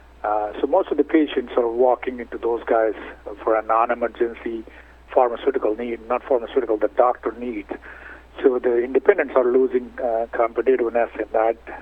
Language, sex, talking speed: English, male, 150 wpm